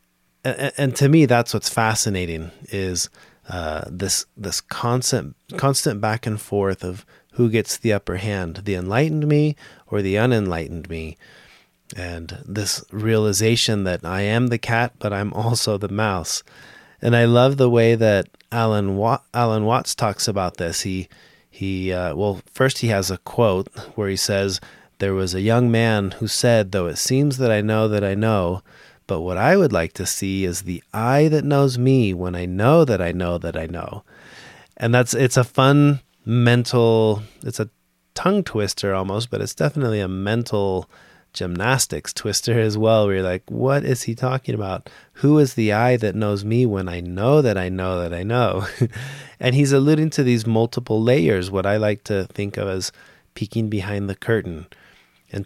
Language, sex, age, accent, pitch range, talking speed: English, male, 30-49, American, 95-120 Hz, 180 wpm